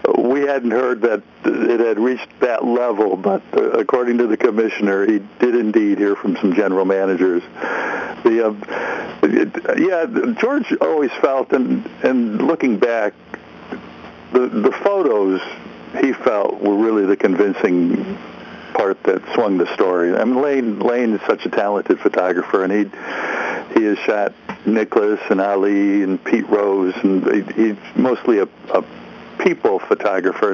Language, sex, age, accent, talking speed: English, male, 60-79, American, 145 wpm